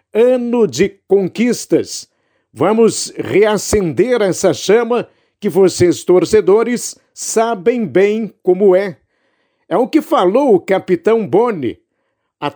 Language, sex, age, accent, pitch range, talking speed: Portuguese, male, 60-79, Brazilian, 190-235 Hz, 105 wpm